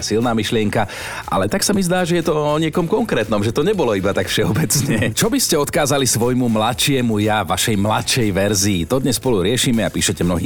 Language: Slovak